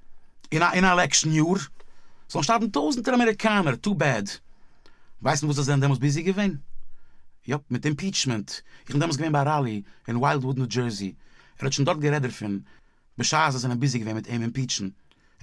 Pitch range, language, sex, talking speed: 120-160 Hz, English, male, 180 wpm